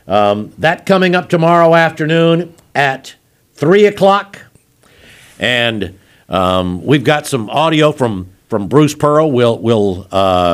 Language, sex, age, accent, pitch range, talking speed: English, male, 60-79, American, 130-165 Hz, 125 wpm